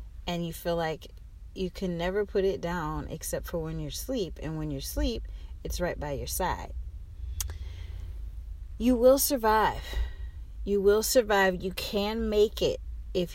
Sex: female